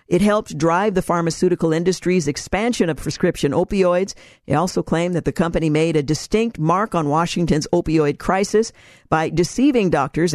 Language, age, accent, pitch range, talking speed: English, 50-69, American, 165-205 Hz, 155 wpm